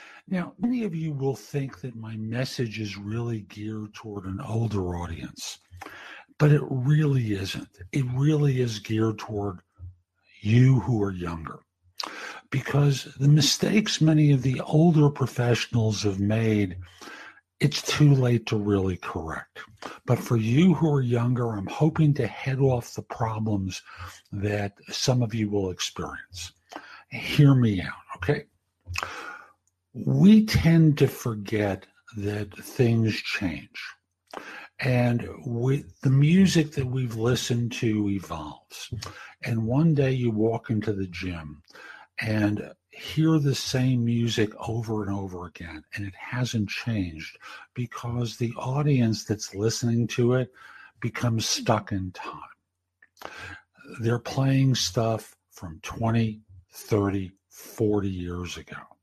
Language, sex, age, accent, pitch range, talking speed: English, male, 60-79, American, 100-135 Hz, 125 wpm